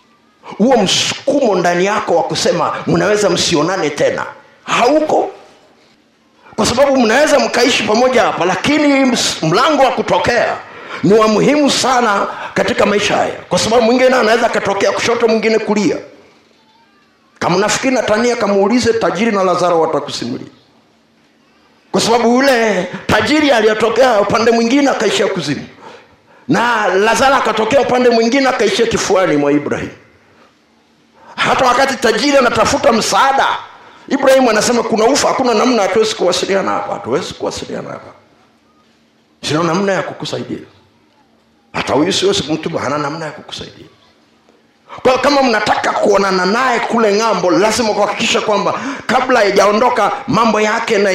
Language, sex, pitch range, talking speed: Swahili, male, 200-255 Hz, 125 wpm